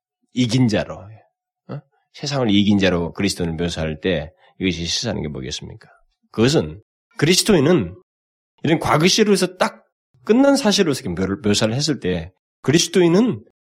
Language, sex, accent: Korean, male, native